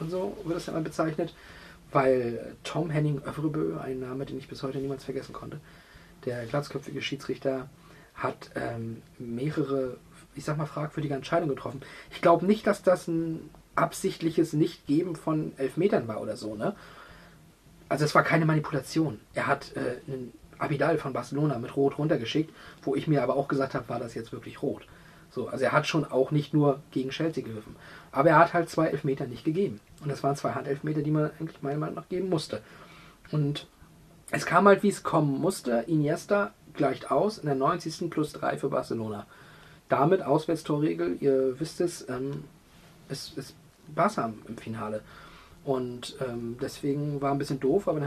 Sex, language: male, German